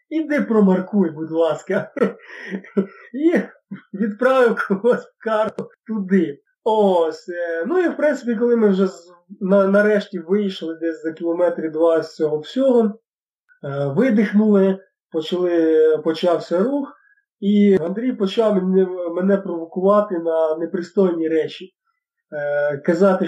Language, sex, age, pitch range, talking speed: Ukrainian, male, 20-39, 175-230 Hz, 100 wpm